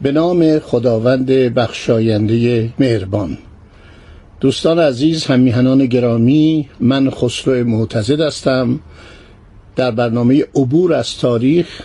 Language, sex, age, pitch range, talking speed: Persian, male, 60-79, 115-155 Hz, 90 wpm